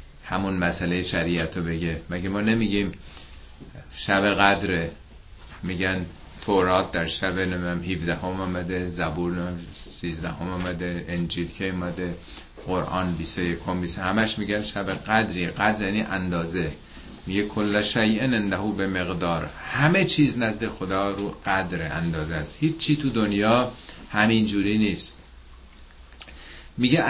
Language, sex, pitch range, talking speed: Persian, male, 85-115 Hz, 120 wpm